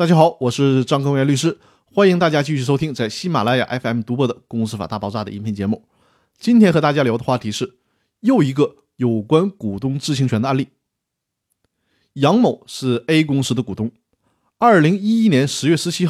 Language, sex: Chinese, male